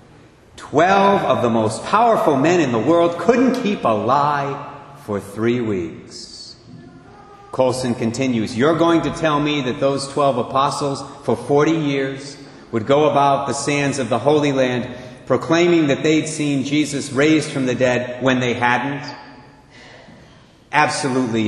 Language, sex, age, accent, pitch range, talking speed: English, male, 40-59, American, 115-155 Hz, 145 wpm